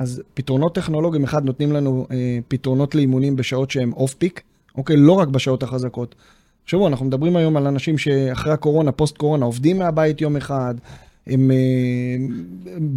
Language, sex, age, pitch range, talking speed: Hebrew, male, 20-39, 130-155 Hz, 150 wpm